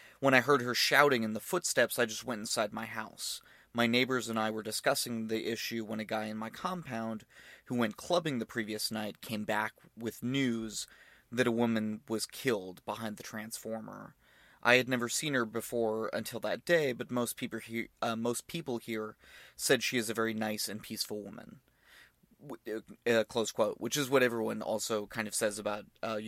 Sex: male